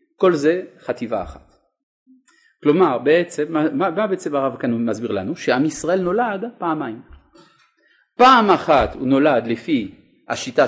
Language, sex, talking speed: Hebrew, male, 125 wpm